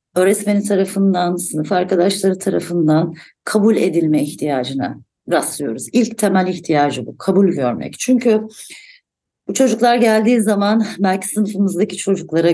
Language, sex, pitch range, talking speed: Turkish, female, 155-195 Hz, 110 wpm